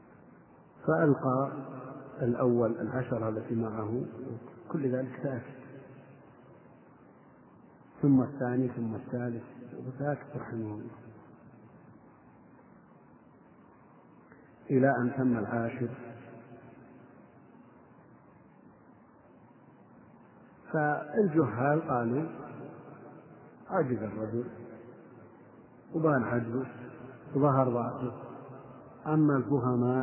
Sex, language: male, Arabic